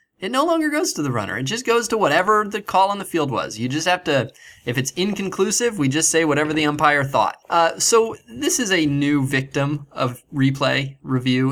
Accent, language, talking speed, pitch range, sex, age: American, English, 220 wpm, 115-155 Hz, male, 20-39